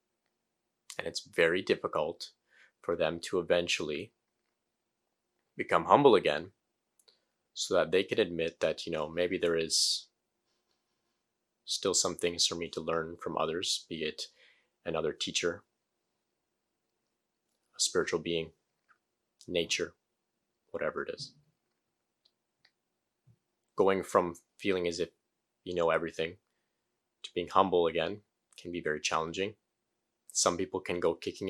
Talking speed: 120 wpm